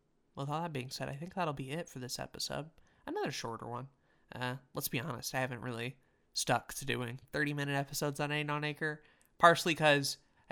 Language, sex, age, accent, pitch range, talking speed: English, male, 20-39, American, 120-145 Hz, 195 wpm